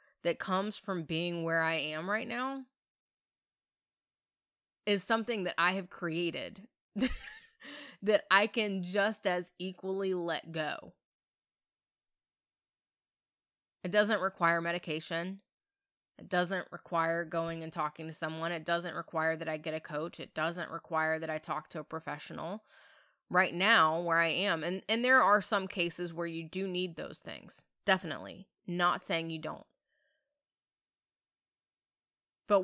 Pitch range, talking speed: 165-200 Hz, 140 wpm